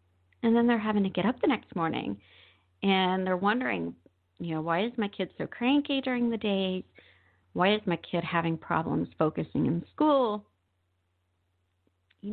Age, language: 40-59, English